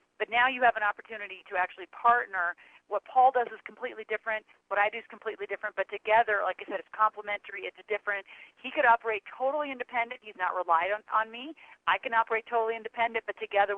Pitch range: 195-230 Hz